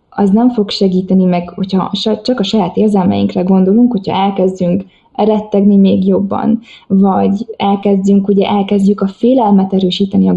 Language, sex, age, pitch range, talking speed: Hungarian, female, 20-39, 195-225 Hz, 140 wpm